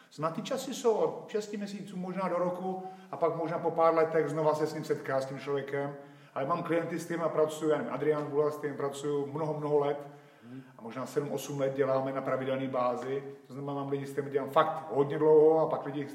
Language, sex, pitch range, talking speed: Slovak, male, 140-205 Hz, 225 wpm